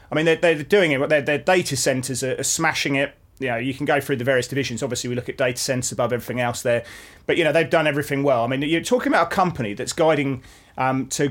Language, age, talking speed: English, 30-49, 255 wpm